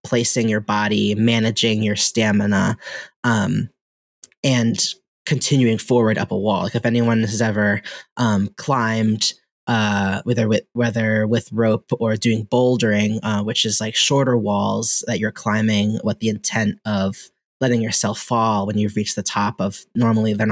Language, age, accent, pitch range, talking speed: English, 20-39, American, 110-130 Hz, 155 wpm